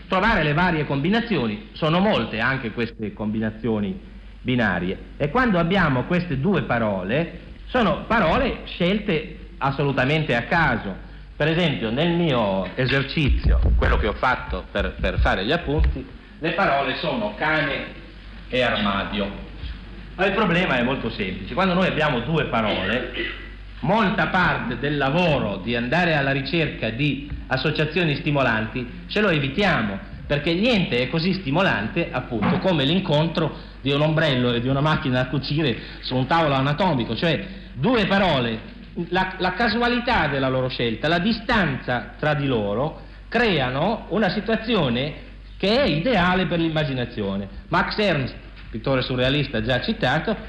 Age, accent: 50-69, native